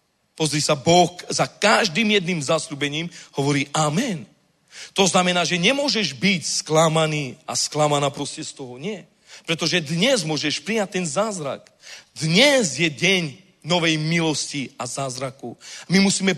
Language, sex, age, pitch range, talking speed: Czech, male, 40-59, 155-195 Hz, 130 wpm